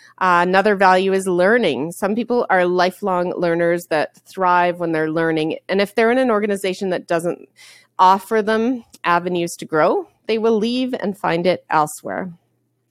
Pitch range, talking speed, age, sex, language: 170-225 Hz, 165 wpm, 30-49, female, English